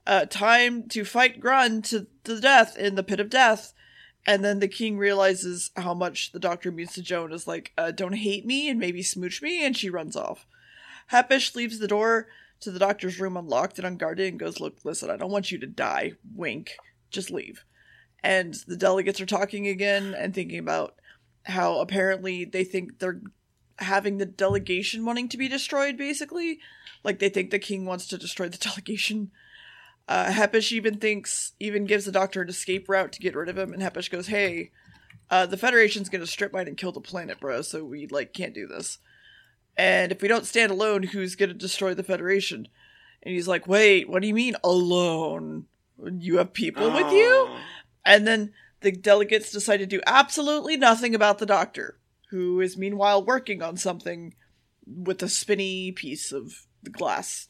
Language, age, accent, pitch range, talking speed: English, 20-39, American, 185-220 Hz, 190 wpm